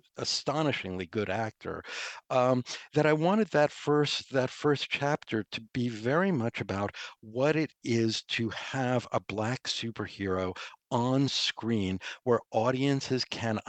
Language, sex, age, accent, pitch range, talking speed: English, male, 60-79, American, 100-145 Hz, 130 wpm